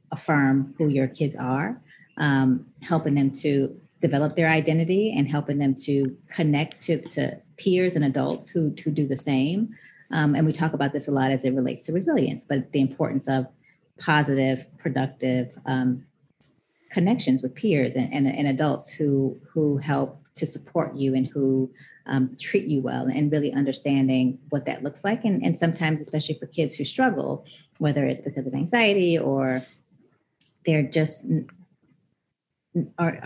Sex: female